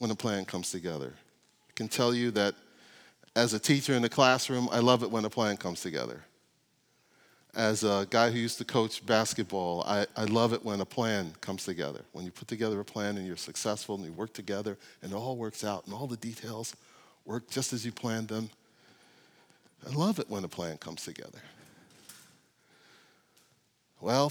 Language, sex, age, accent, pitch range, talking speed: English, male, 40-59, American, 105-140 Hz, 195 wpm